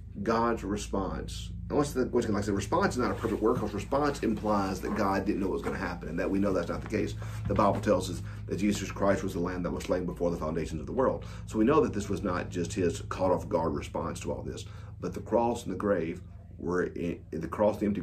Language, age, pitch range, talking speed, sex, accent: English, 40-59, 85-105 Hz, 280 wpm, male, American